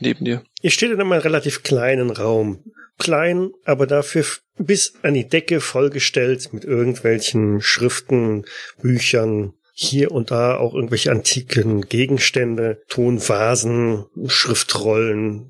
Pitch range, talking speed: 115-145 Hz, 110 wpm